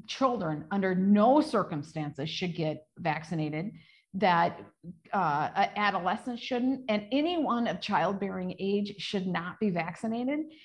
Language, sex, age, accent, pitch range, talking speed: English, female, 50-69, American, 190-245 Hz, 115 wpm